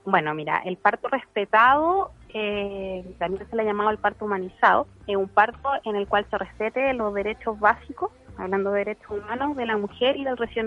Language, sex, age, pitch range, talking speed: Spanish, female, 30-49, 190-235 Hz, 200 wpm